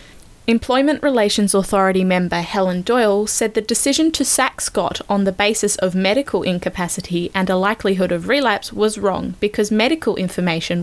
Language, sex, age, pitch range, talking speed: English, female, 20-39, 185-230 Hz, 155 wpm